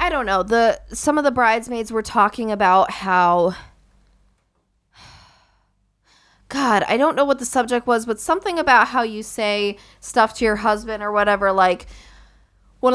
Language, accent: English, American